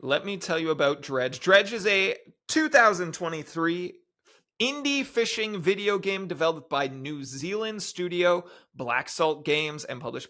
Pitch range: 140-205 Hz